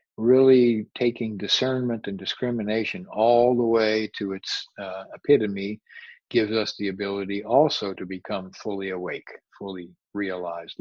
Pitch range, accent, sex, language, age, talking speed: 105-125 Hz, American, male, English, 50-69, 130 wpm